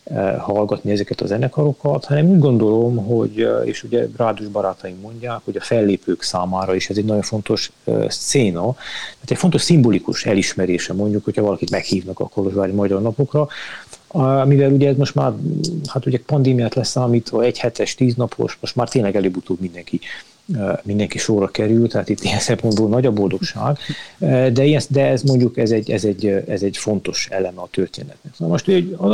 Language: Hungarian